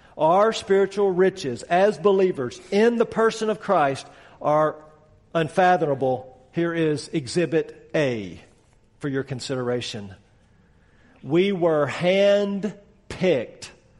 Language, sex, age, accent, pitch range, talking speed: English, male, 50-69, American, 140-190 Hz, 100 wpm